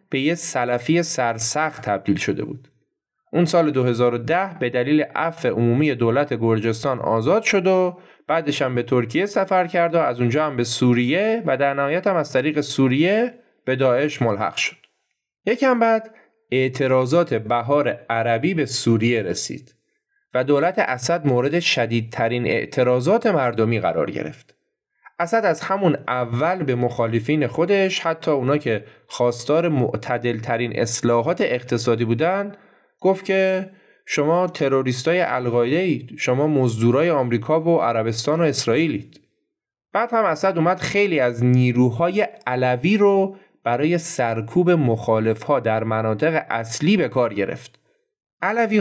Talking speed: 130 wpm